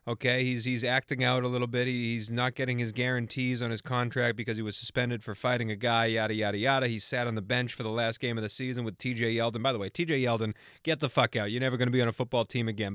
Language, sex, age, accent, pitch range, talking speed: English, male, 30-49, American, 120-155 Hz, 285 wpm